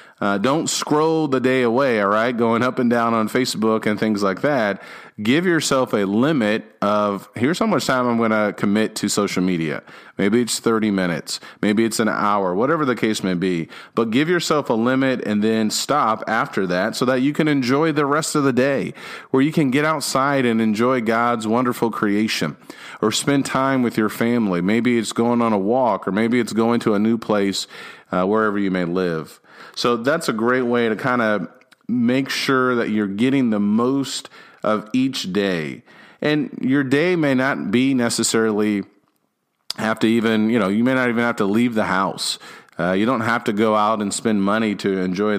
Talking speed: 200 wpm